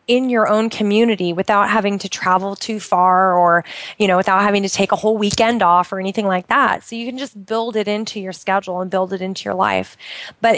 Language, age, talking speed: English, 20-39, 235 wpm